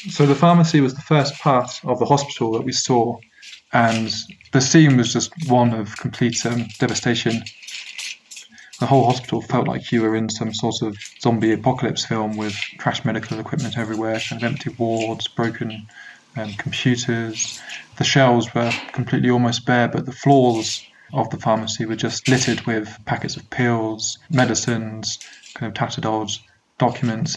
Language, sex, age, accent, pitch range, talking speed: English, male, 20-39, British, 110-130 Hz, 160 wpm